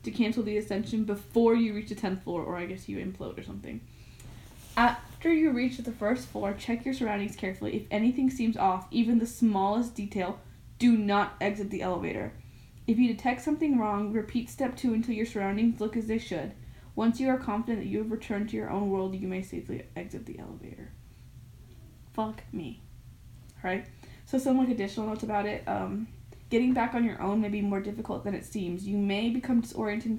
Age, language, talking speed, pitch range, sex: 10-29, English, 195 wpm, 195-230 Hz, female